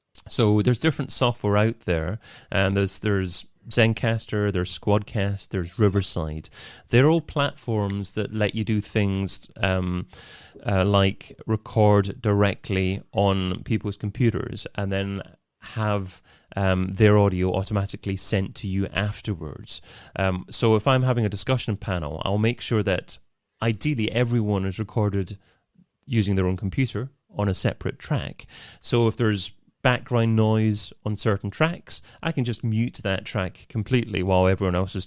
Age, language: 30-49, English